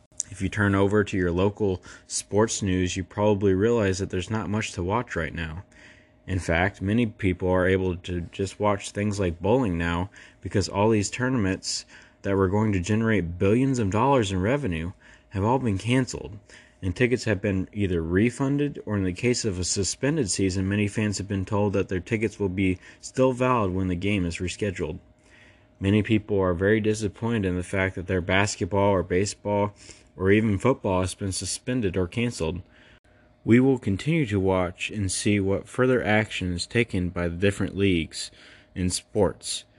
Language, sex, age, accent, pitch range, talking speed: English, male, 20-39, American, 95-110 Hz, 180 wpm